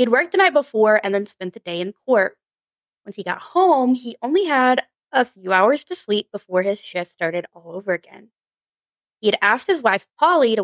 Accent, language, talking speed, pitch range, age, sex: American, English, 210 wpm, 185-250 Hz, 20-39, female